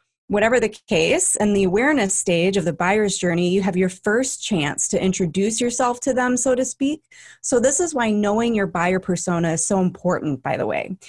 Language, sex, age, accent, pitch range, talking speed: English, female, 20-39, American, 180-230 Hz, 205 wpm